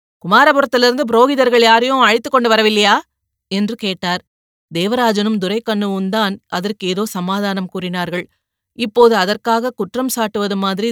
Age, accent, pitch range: 30-49, native, 190-245 Hz